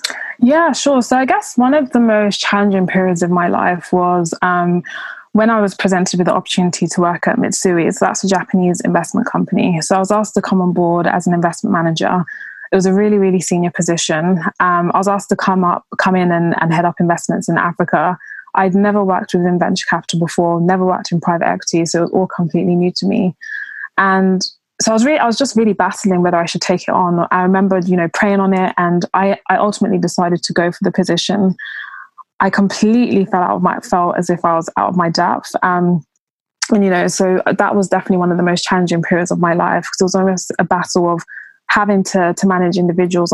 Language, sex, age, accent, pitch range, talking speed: English, female, 20-39, British, 175-200 Hz, 230 wpm